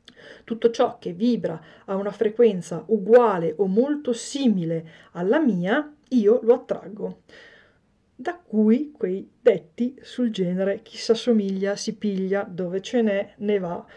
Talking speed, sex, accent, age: 135 wpm, female, native, 40-59